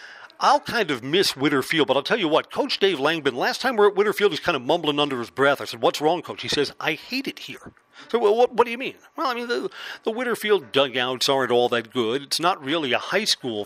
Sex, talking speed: male, 275 wpm